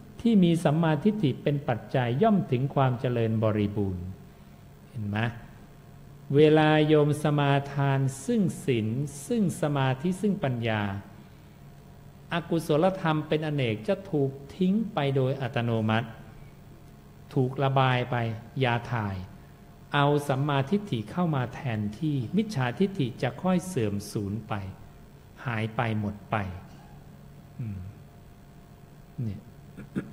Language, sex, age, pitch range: English, male, 60-79, 115-160 Hz